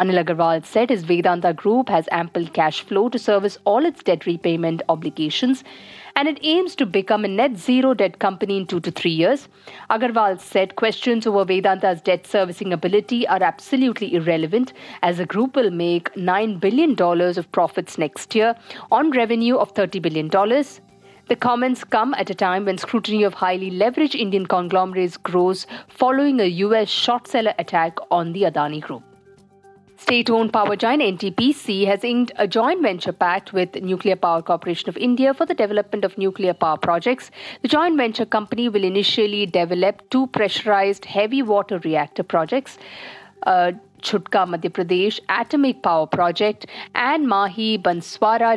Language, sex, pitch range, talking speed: English, female, 180-230 Hz, 155 wpm